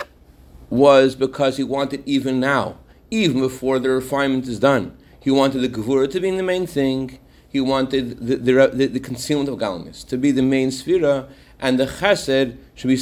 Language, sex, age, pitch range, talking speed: English, male, 40-59, 130-170 Hz, 185 wpm